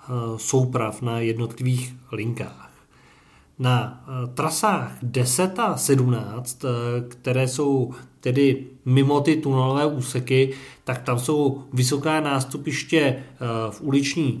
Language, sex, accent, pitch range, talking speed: Czech, male, native, 125-145 Hz, 95 wpm